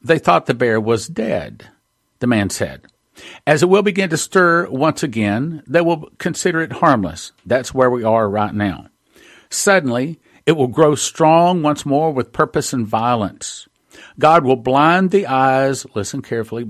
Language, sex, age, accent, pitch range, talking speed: English, male, 50-69, American, 115-150 Hz, 165 wpm